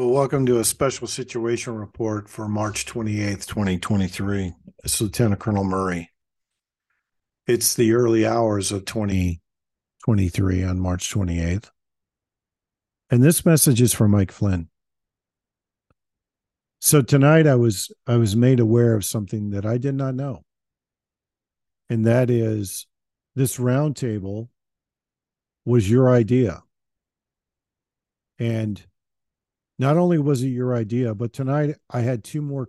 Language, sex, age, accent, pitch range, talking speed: English, male, 50-69, American, 100-130 Hz, 125 wpm